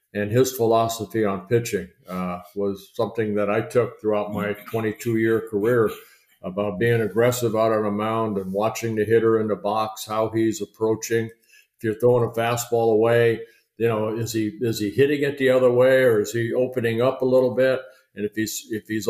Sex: male